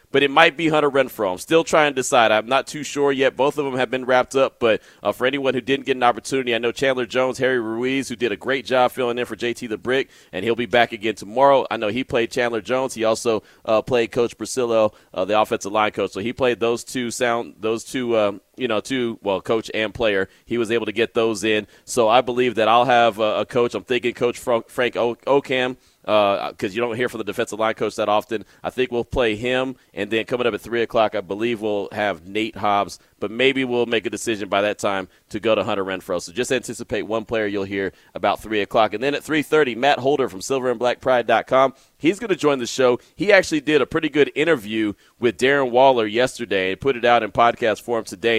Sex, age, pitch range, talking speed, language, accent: male, 30-49, 110-130 Hz, 240 wpm, English, American